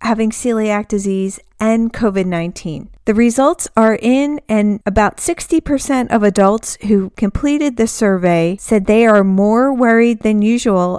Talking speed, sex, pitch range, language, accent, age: 135 wpm, female, 195-235 Hz, English, American, 40-59